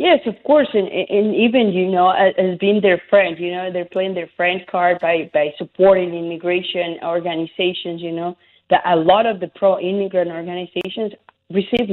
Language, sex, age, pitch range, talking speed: English, female, 20-39, 175-200 Hz, 180 wpm